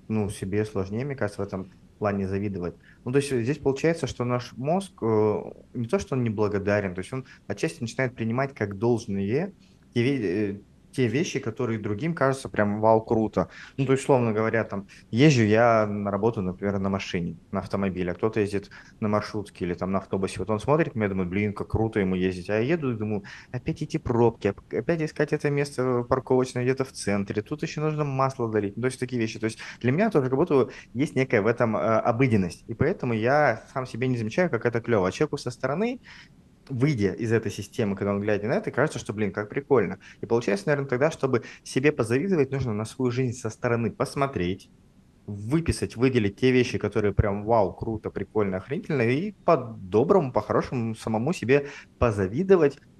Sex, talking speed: male, 190 wpm